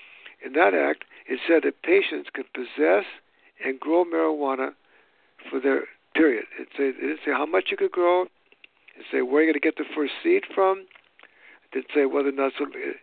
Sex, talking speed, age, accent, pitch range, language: male, 190 wpm, 60-79, American, 125-175 Hz, English